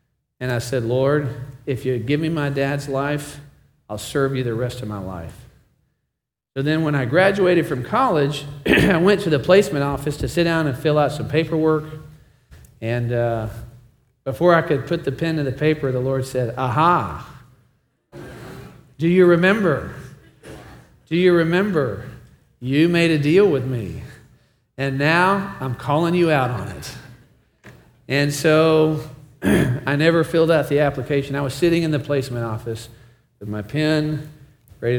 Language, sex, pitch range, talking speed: English, male, 120-150 Hz, 160 wpm